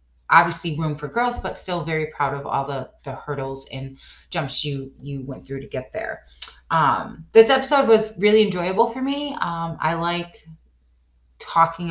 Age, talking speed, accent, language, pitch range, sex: 30-49, 170 wpm, American, English, 140-170 Hz, female